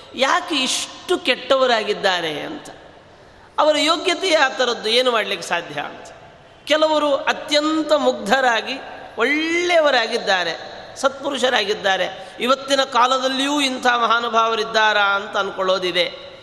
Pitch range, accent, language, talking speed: 220-285 Hz, native, Kannada, 85 wpm